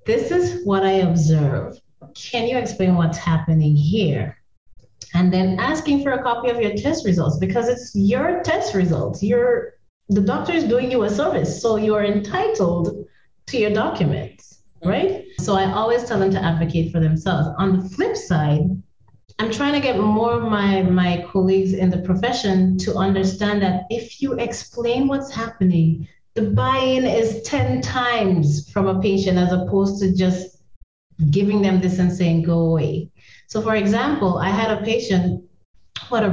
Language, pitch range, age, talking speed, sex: English, 165-225 Hz, 30-49, 170 wpm, female